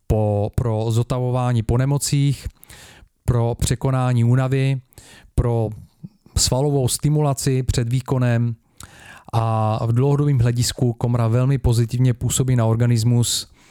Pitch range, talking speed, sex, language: 110-125 Hz, 95 wpm, male, Czech